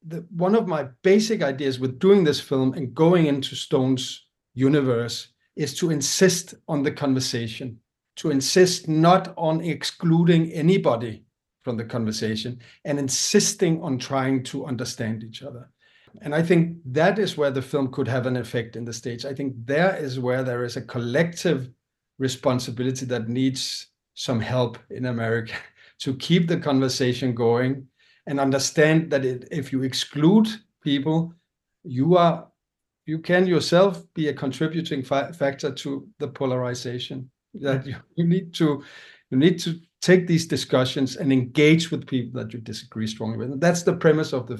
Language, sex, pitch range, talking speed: English, male, 125-160 Hz, 160 wpm